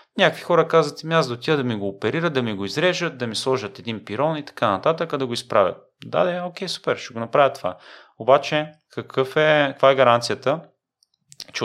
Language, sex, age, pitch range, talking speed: Bulgarian, male, 30-49, 105-145 Hz, 210 wpm